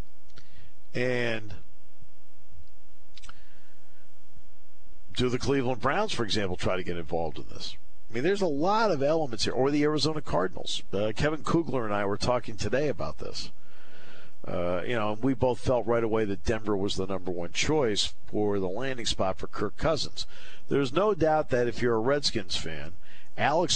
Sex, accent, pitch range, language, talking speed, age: male, American, 90-125 Hz, English, 170 wpm, 50-69